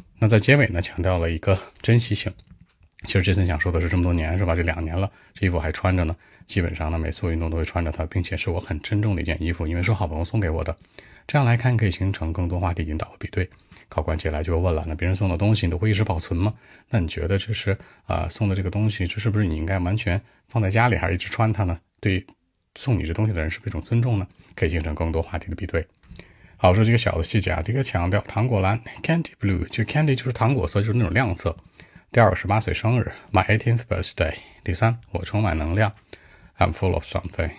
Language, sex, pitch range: Chinese, male, 85-105 Hz